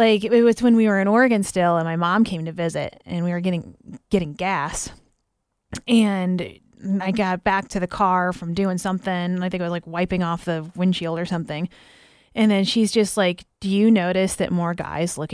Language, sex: English, female